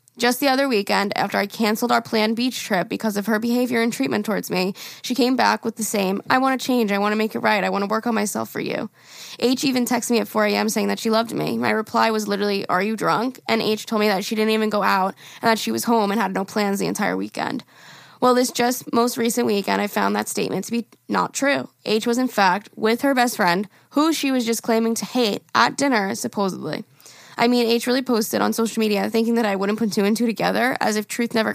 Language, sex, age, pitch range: English, female, 10-29, 205-240 Hz